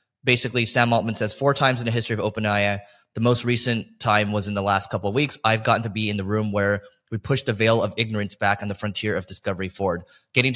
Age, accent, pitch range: 20-39, American, 105-125 Hz